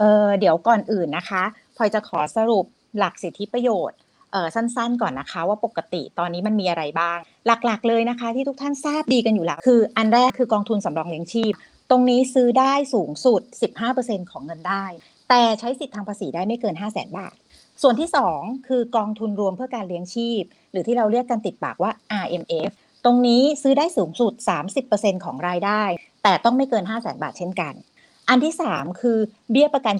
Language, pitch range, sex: Thai, 185-245 Hz, female